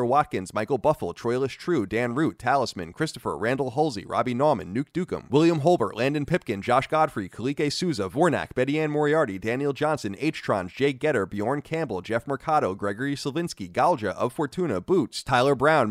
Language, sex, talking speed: English, male, 165 wpm